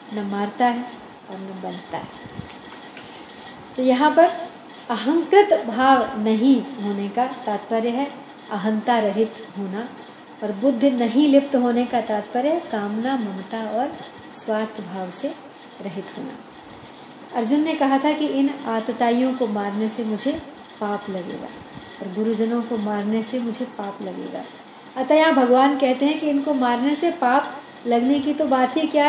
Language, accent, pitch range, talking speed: Hindi, native, 225-275 Hz, 150 wpm